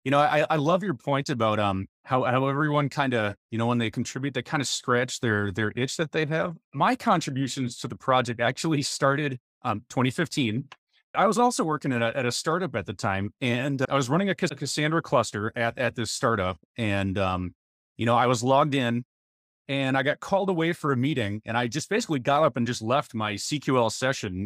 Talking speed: 220 wpm